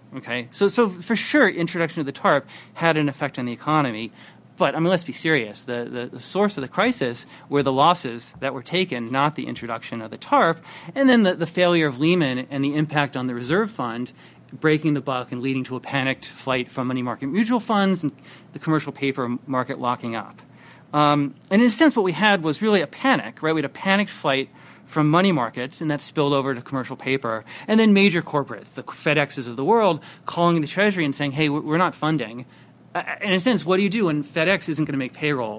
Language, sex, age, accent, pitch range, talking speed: English, male, 30-49, American, 130-180 Hz, 230 wpm